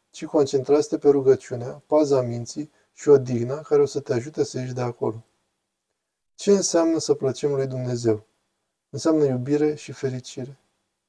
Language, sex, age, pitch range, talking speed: Romanian, male, 20-39, 125-150 Hz, 155 wpm